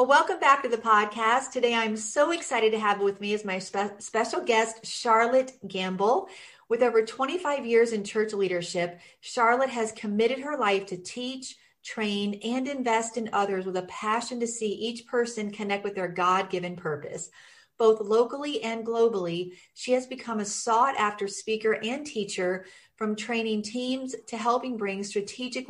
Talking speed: 170 wpm